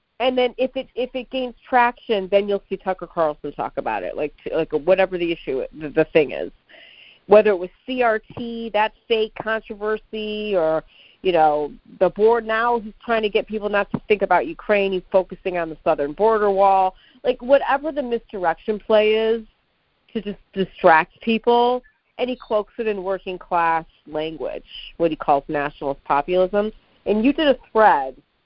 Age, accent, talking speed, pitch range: 40-59, American, 175 wpm, 165-225 Hz